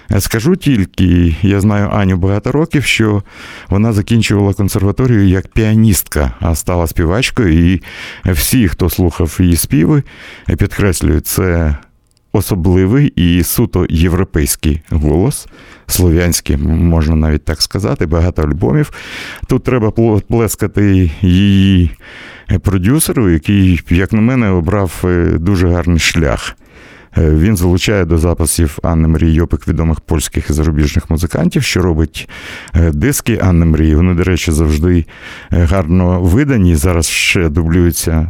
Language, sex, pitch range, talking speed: Russian, male, 80-100 Hz, 115 wpm